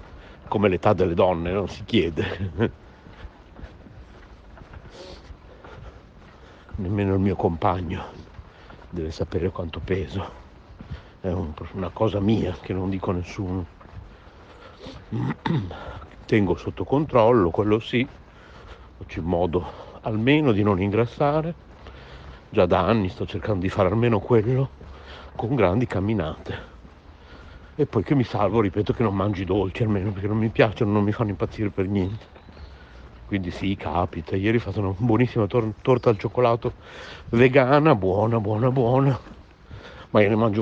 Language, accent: Italian, native